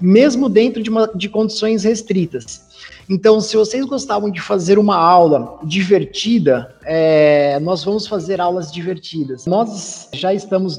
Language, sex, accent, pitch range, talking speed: Portuguese, male, Brazilian, 165-210 Hz, 130 wpm